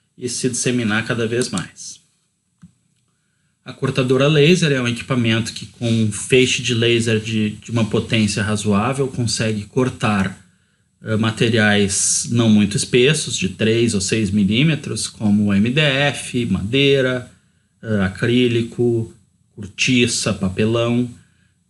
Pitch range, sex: 110-130 Hz, male